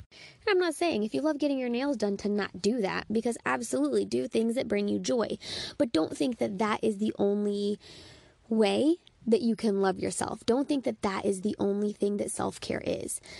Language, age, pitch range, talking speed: English, 20-39, 205-270 Hz, 210 wpm